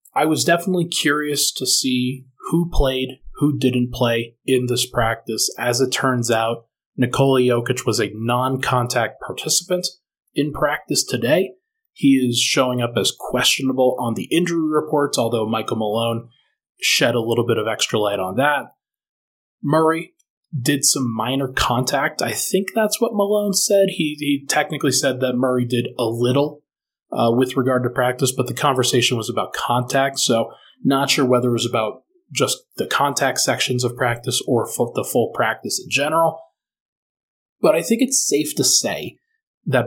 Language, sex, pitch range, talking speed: English, male, 120-150 Hz, 165 wpm